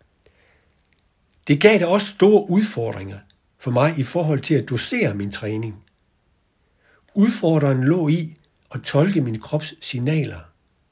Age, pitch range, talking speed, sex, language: 60-79, 100-145 Hz, 125 wpm, male, Danish